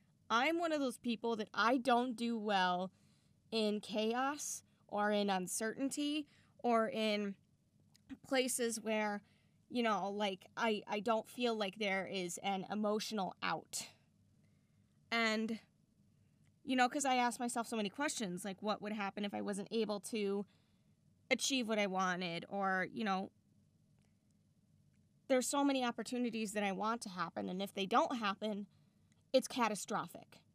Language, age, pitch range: English, 20-39, 205-245 Hz